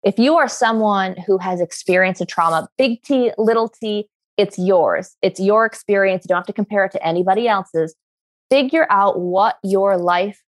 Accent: American